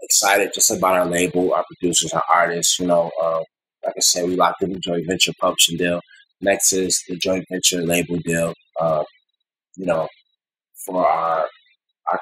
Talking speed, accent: 170 wpm, American